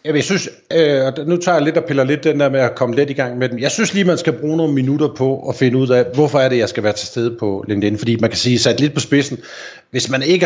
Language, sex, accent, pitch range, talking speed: Danish, male, native, 110-145 Hz, 320 wpm